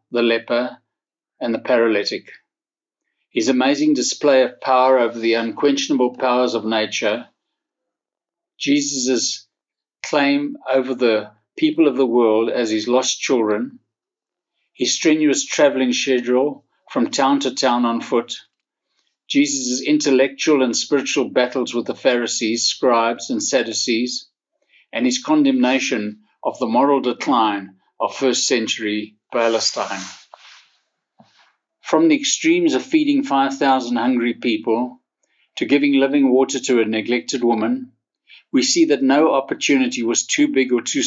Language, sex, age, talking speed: English, male, 60-79, 125 wpm